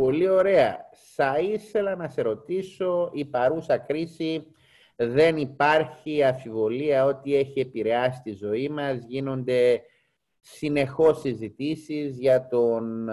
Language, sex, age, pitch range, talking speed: Greek, male, 30-49, 125-170 Hz, 110 wpm